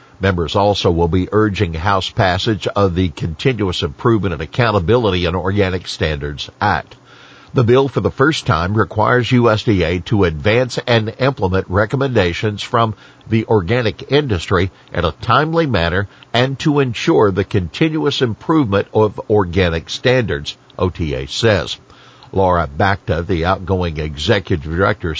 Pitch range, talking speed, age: 95-130 Hz, 130 wpm, 60-79